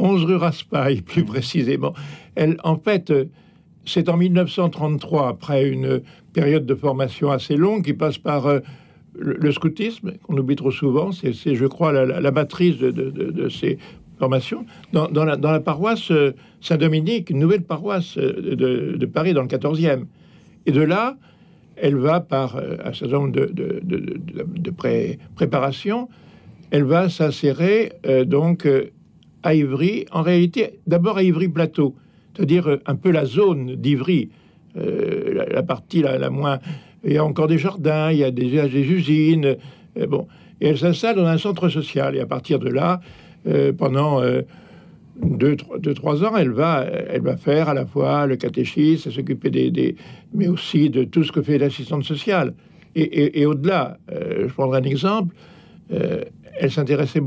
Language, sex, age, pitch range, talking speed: French, male, 60-79, 140-175 Hz, 185 wpm